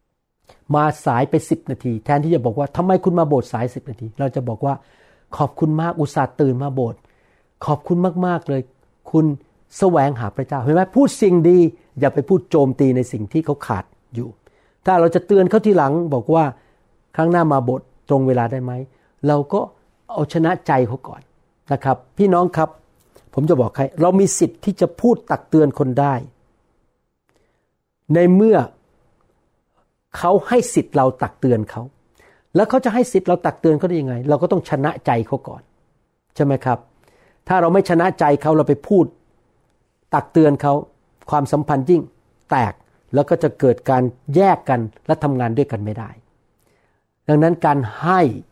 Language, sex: Thai, male